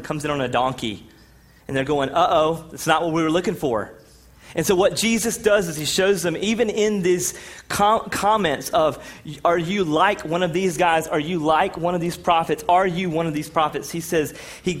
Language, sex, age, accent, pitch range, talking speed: English, male, 30-49, American, 115-155 Hz, 220 wpm